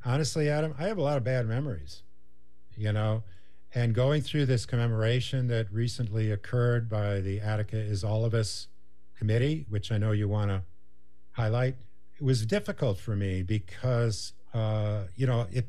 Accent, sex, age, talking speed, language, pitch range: American, male, 50-69, 170 wpm, English, 105-135 Hz